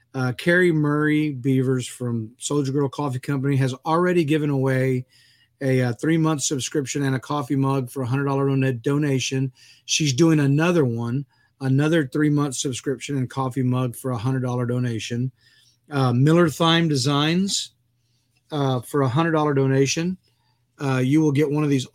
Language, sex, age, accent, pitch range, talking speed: English, male, 40-59, American, 125-150 Hz, 165 wpm